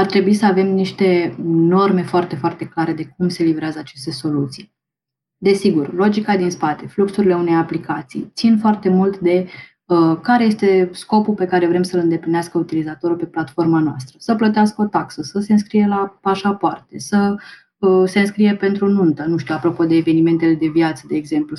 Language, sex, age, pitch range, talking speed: Romanian, female, 20-39, 160-190 Hz, 175 wpm